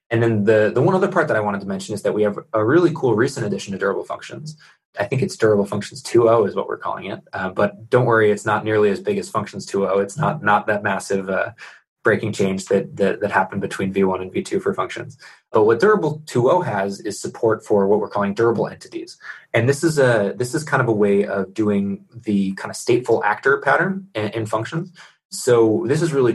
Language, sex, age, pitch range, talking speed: English, male, 20-39, 100-125 Hz, 235 wpm